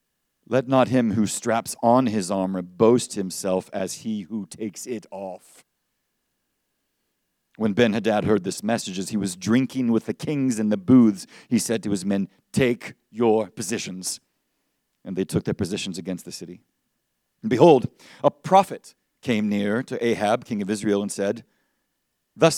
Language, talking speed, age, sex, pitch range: English, 160 wpm, 50-69, male, 110-145 Hz